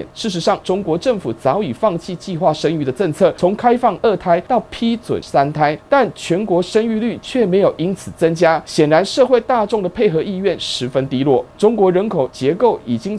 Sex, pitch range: male, 150-215 Hz